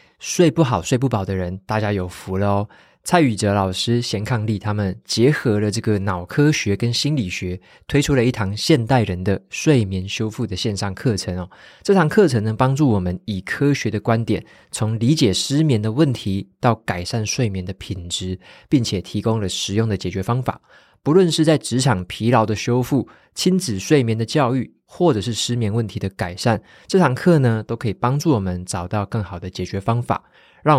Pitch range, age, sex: 100-125 Hz, 20-39, male